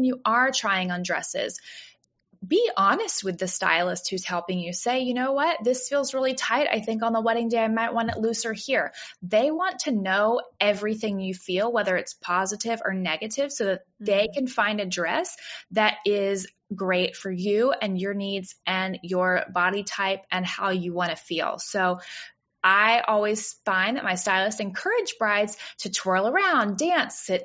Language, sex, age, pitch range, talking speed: English, female, 20-39, 190-240 Hz, 185 wpm